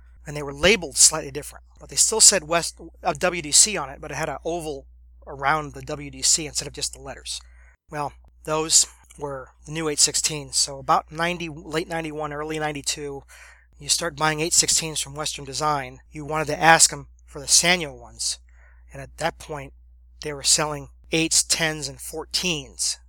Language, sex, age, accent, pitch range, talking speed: English, male, 30-49, American, 130-160 Hz, 170 wpm